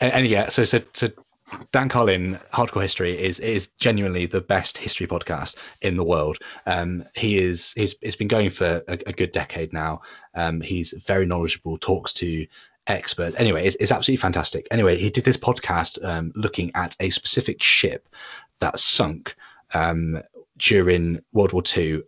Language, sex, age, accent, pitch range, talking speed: English, male, 30-49, British, 85-105 Hz, 165 wpm